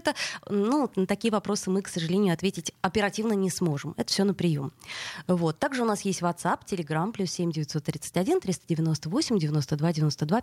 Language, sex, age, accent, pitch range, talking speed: Russian, female, 20-39, native, 170-220 Hz, 165 wpm